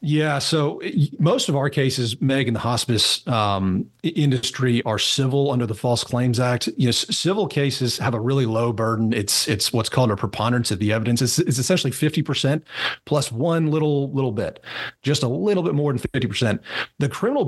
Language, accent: English, American